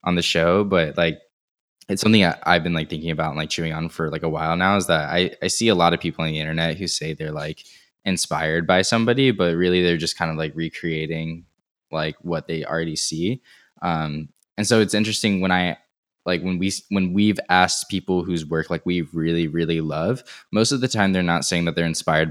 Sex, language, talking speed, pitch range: male, English, 225 wpm, 80-90 Hz